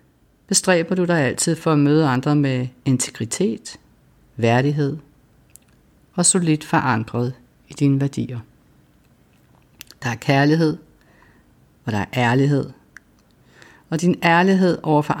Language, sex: Danish, female